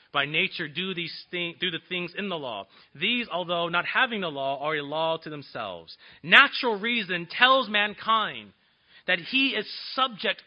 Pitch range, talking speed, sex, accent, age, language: 175-235 Hz, 170 wpm, male, American, 30-49, English